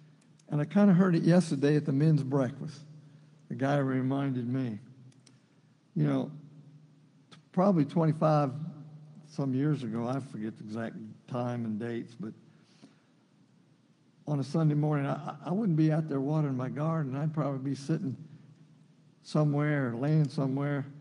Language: English